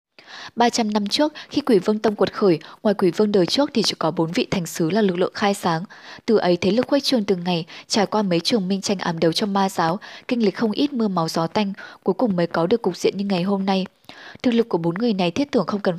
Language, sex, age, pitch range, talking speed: Vietnamese, female, 10-29, 180-230 Hz, 280 wpm